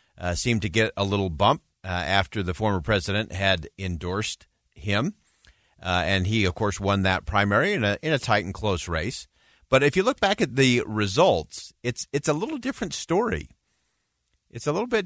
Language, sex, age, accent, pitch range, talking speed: English, male, 50-69, American, 95-135 Hz, 195 wpm